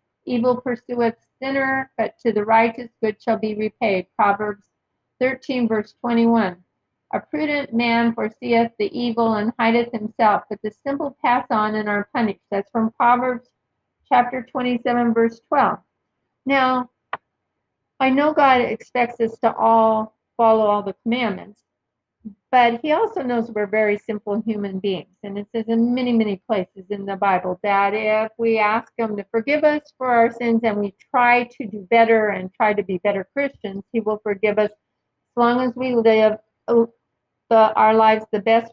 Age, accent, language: 50-69, American, English